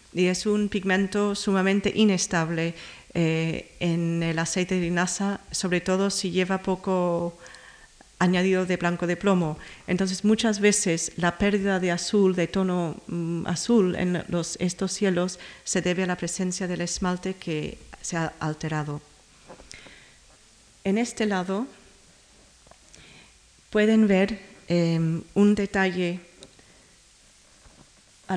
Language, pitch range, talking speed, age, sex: Spanish, 170-195 Hz, 120 wpm, 40-59, female